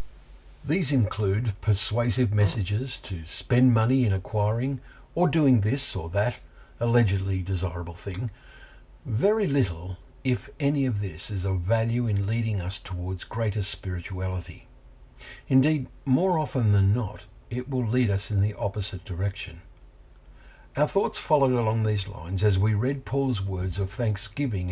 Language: English